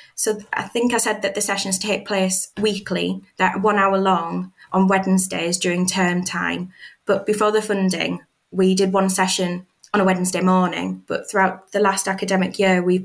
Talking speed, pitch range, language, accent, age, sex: 180 wpm, 190-215 Hz, English, British, 20-39, female